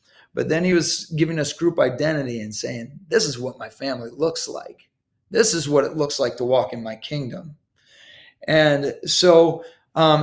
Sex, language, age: male, English, 30-49